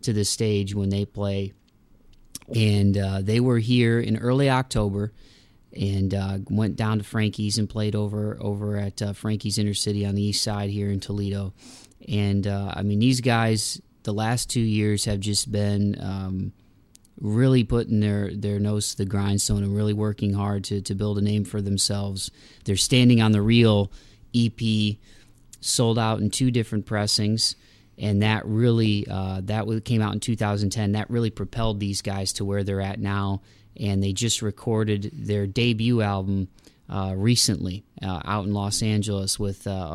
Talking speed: 175 wpm